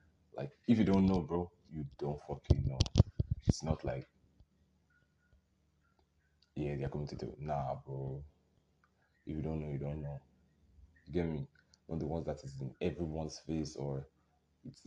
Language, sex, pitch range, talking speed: English, male, 75-90 Hz, 170 wpm